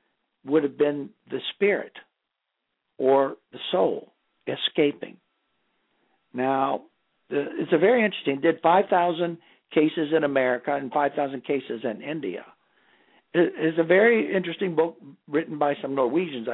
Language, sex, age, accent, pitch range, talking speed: English, male, 60-79, American, 140-175 Hz, 125 wpm